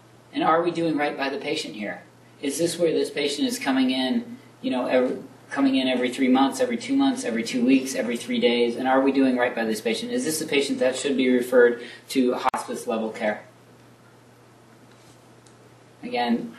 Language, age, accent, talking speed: English, 30-49, American, 200 wpm